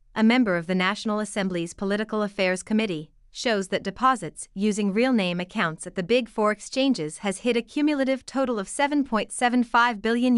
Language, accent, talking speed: English, American, 160 wpm